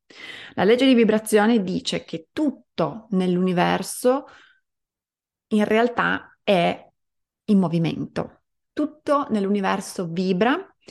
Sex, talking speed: female, 90 wpm